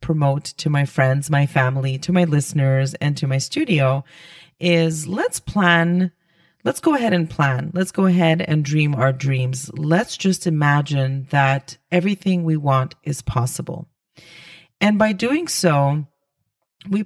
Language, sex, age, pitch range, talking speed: English, female, 30-49, 150-170 Hz, 150 wpm